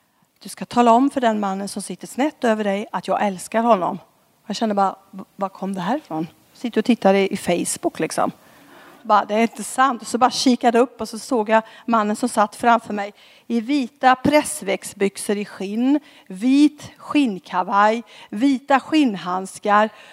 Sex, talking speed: female, 170 wpm